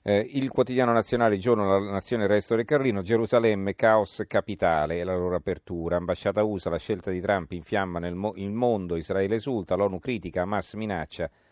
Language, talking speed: Italian, 180 wpm